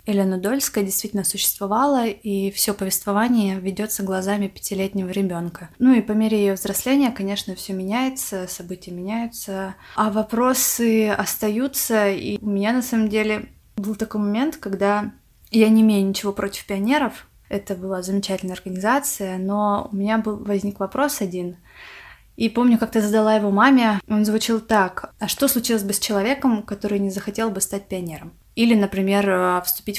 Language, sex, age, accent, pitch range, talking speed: Russian, female, 20-39, native, 195-230 Hz, 155 wpm